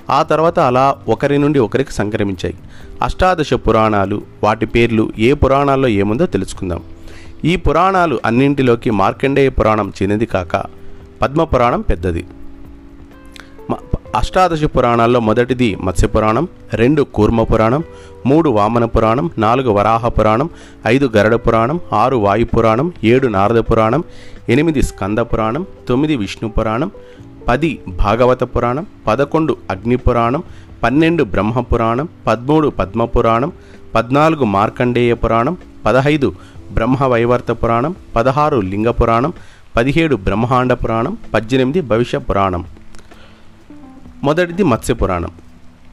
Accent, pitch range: native, 100-130 Hz